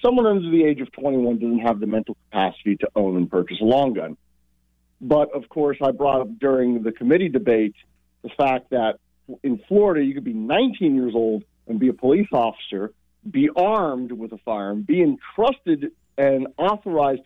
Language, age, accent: English, 40-59, American